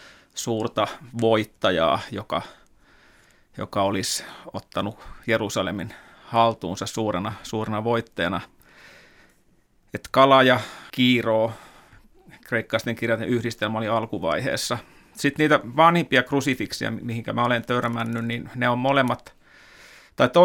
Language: Finnish